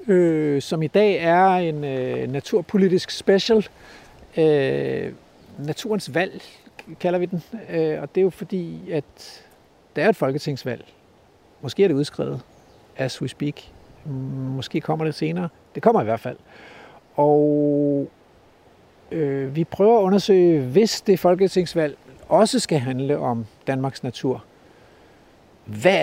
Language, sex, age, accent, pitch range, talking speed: Danish, male, 60-79, native, 145-190 Hz, 120 wpm